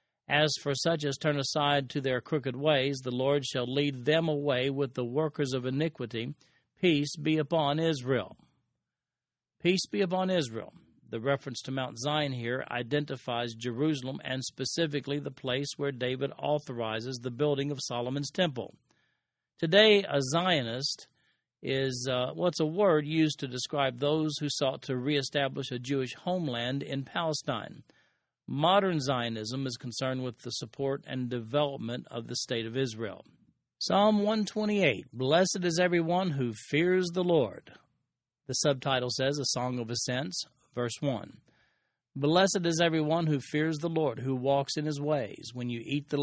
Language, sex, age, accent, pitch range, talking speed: English, male, 50-69, American, 125-155 Hz, 155 wpm